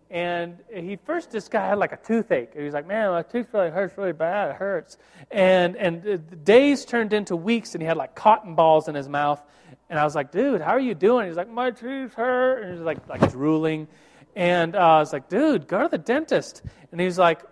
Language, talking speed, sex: English, 245 wpm, male